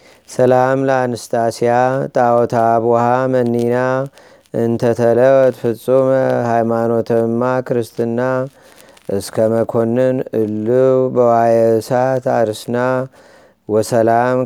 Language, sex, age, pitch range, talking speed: Amharic, male, 30-49, 115-130 Hz, 65 wpm